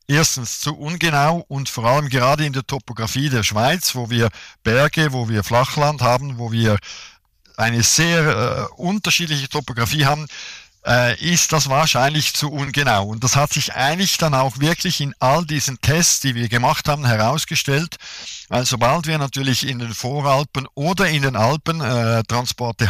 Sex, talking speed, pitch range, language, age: male, 160 wpm, 115-155 Hz, German, 50-69